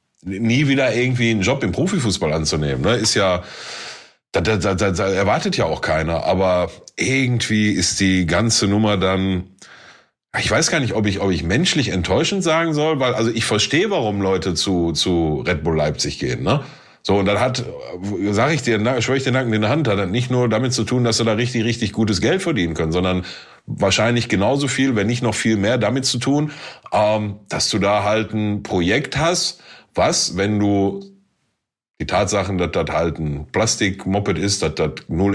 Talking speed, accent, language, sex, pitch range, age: 195 wpm, German, German, male, 95-115 Hz, 30-49